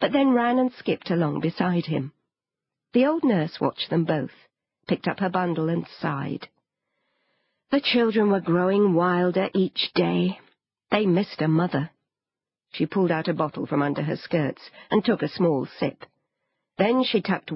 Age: 50-69